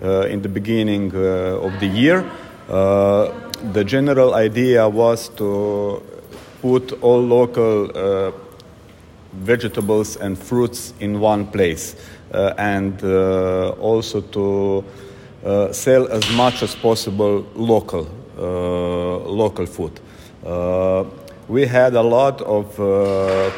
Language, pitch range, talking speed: English, 100-120 Hz, 115 wpm